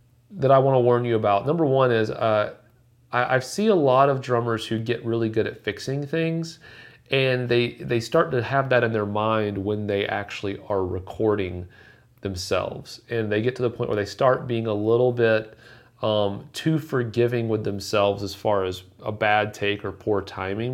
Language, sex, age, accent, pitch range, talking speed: English, male, 40-59, American, 105-125 Hz, 195 wpm